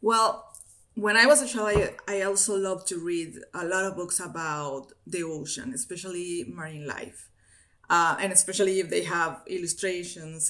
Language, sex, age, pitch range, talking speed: English, female, 30-49, 175-250 Hz, 165 wpm